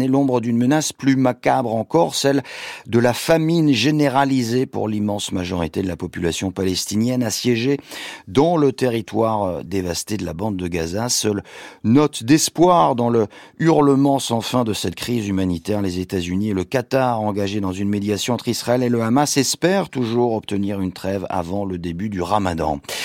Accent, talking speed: French, 170 wpm